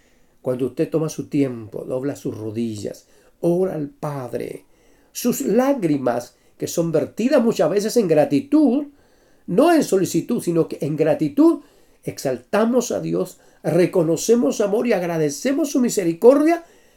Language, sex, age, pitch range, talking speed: Spanish, male, 50-69, 145-215 Hz, 125 wpm